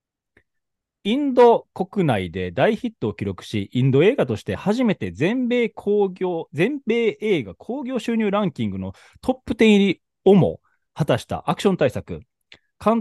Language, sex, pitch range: Japanese, male, 135-220 Hz